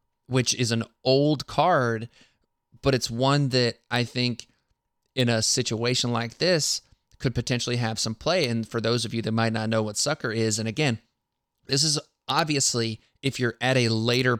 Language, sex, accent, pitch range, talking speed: English, male, American, 115-135 Hz, 180 wpm